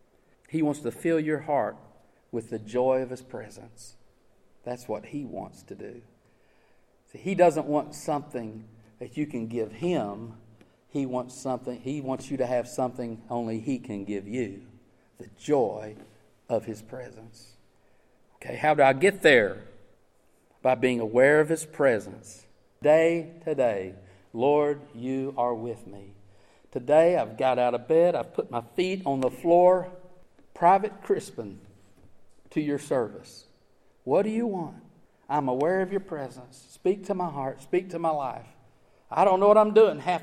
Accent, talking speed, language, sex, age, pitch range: American, 160 wpm, English, male, 50-69, 120-180 Hz